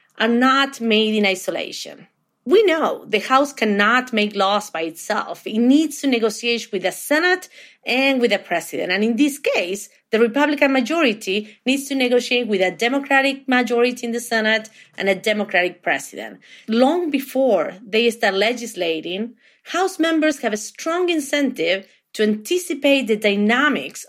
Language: English